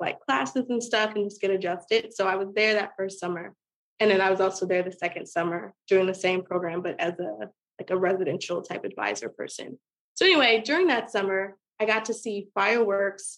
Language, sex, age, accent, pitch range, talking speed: English, female, 20-39, American, 185-215 Hz, 210 wpm